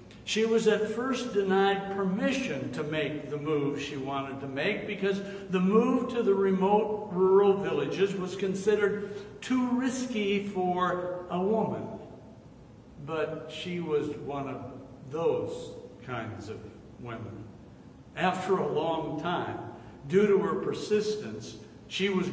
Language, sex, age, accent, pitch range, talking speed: English, male, 60-79, American, 155-205 Hz, 130 wpm